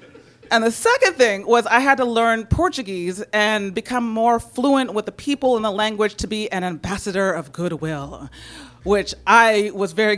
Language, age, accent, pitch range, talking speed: English, 30-49, American, 180-240 Hz, 175 wpm